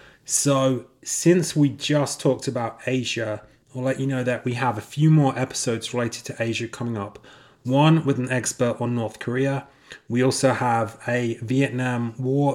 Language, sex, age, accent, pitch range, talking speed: English, male, 30-49, British, 120-140 Hz, 170 wpm